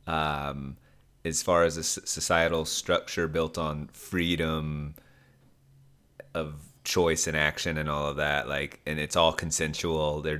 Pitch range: 80-95 Hz